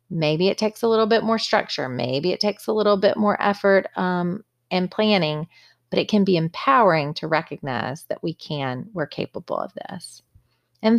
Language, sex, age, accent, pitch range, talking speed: English, female, 30-49, American, 155-195 Hz, 185 wpm